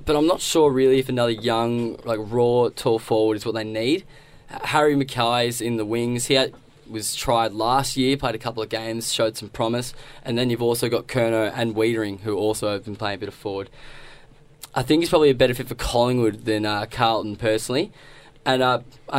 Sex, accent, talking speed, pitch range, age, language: male, Australian, 210 wpm, 110-130 Hz, 10-29, English